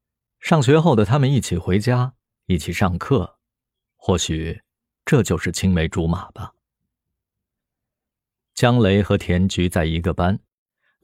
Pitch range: 90-115 Hz